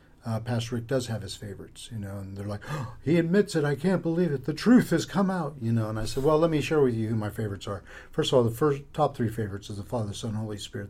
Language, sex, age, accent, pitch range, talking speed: English, male, 50-69, American, 110-135 Hz, 290 wpm